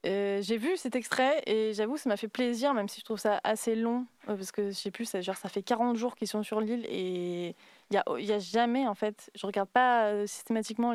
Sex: female